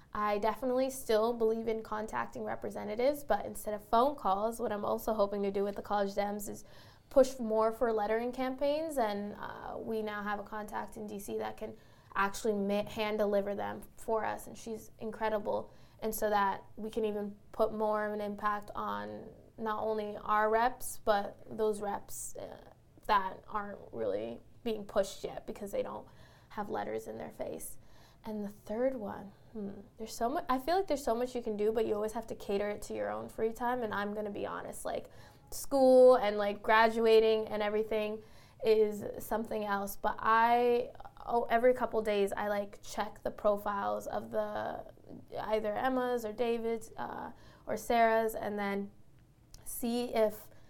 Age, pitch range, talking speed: 20-39, 205-230 Hz, 175 wpm